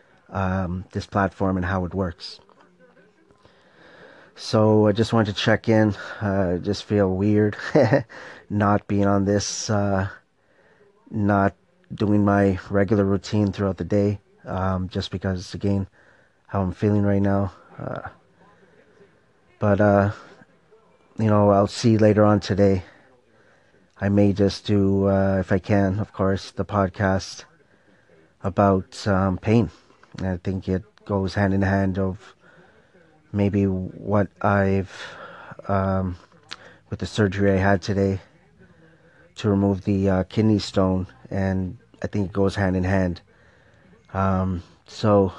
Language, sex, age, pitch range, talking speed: English, male, 30-49, 95-105 Hz, 130 wpm